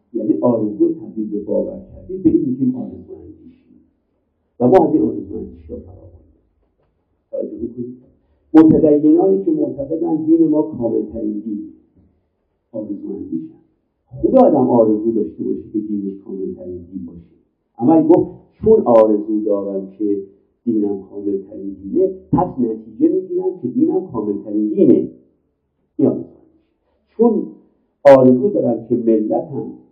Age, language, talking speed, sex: 50-69, Persian, 110 wpm, male